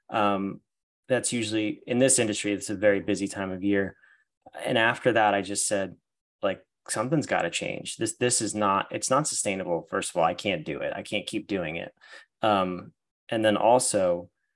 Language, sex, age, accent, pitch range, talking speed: English, male, 30-49, American, 100-115 Hz, 195 wpm